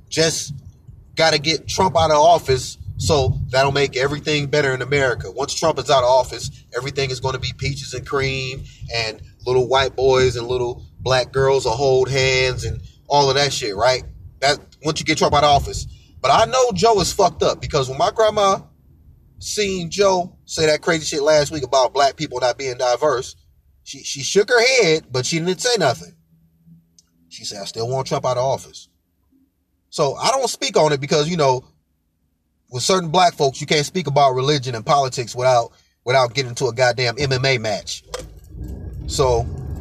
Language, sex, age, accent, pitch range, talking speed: English, male, 30-49, American, 120-160 Hz, 190 wpm